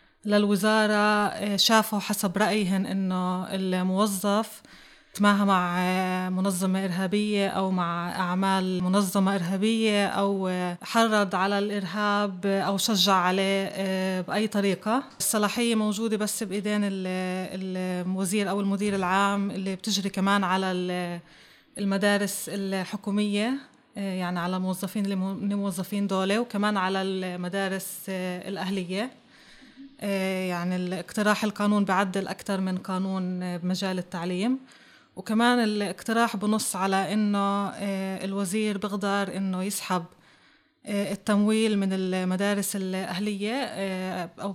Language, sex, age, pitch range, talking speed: Arabic, female, 20-39, 185-210 Hz, 95 wpm